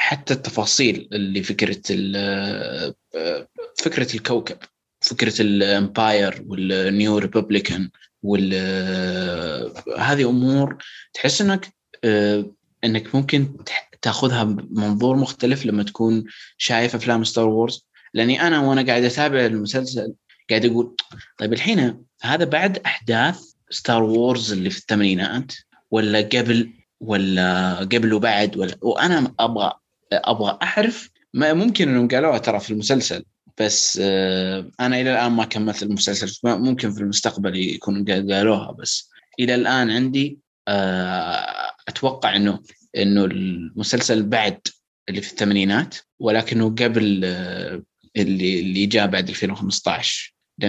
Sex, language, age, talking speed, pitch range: male, Arabic, 20-39, 110 wpm, 100-125 Hz